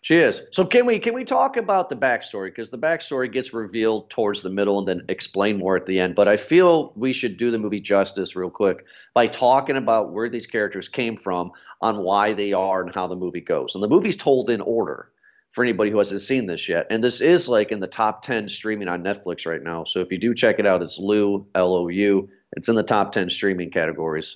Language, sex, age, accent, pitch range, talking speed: English, male, 40-59, American, 95-125 Hz, 245 wpm